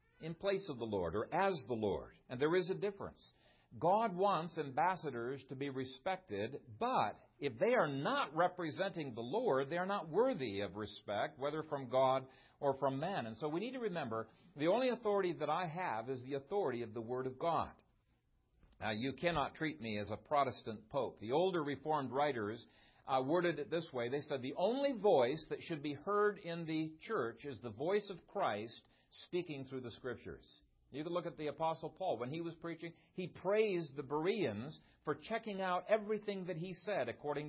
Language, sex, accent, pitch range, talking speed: English, male, American, 130-190 Hz, 195 wpm